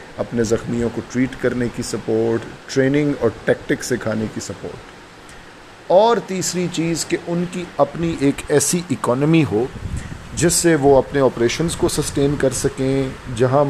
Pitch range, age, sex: 115-145 Hz, 40-59, male